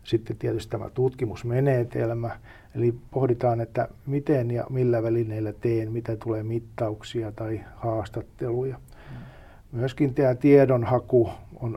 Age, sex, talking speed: 50-69, male, 105 wpm